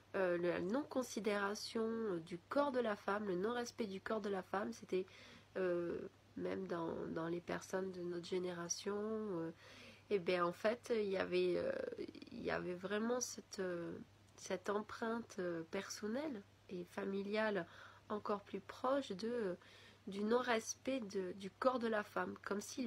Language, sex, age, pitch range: French, female, 30-49, 180-225 Hz